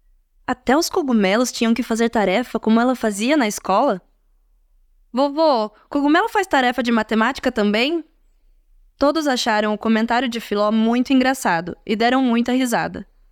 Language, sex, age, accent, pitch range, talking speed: Portuguese, female, 20-39, Brazilian, 200-265 Hz, 140 wpm